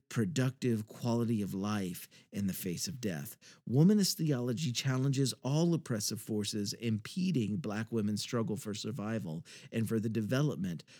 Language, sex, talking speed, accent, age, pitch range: English, male, 135 wpm, American, 50-69, 105-145 Hz